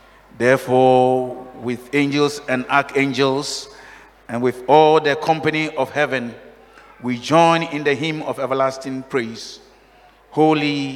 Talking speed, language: 115 wpm, English